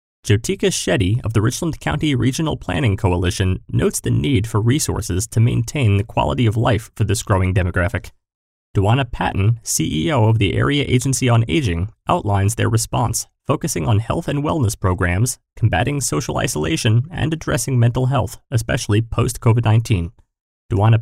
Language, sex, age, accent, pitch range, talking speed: English, male, 30-49, American, 100-125 Hz, 150 wpm